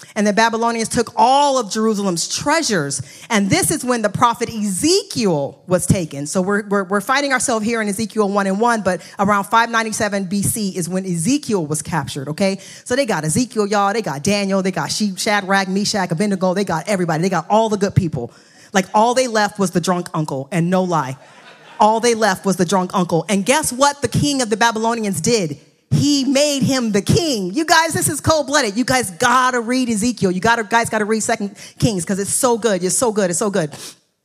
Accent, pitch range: American, 175-230 Hz